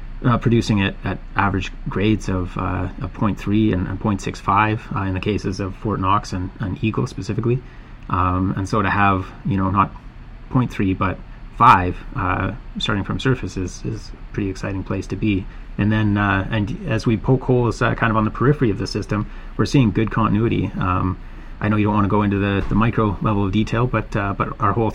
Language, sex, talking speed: English, male, 205 wpm